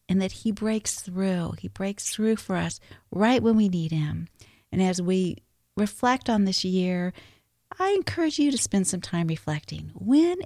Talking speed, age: 180 wpm, 50-69